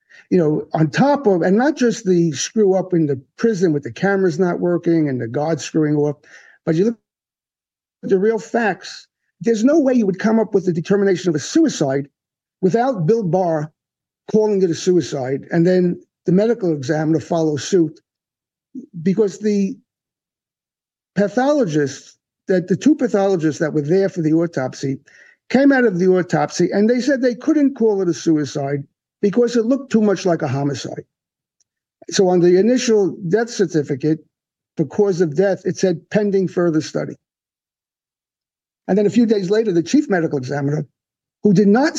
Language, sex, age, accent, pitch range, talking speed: English, male, 50-69, American, 160-215 Hz, 175 wpm